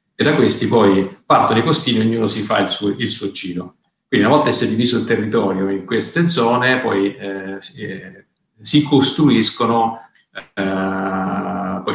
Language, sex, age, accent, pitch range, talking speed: Italian, male, 40-59, native, 100-120 Hz, 160 wpm